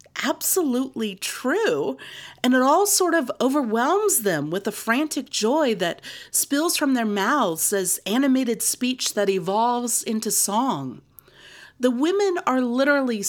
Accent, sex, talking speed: American, female, 130 wpm